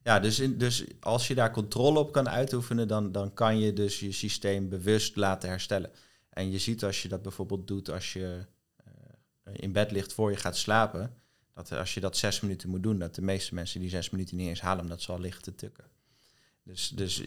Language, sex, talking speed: Dutch, male, 220 wpm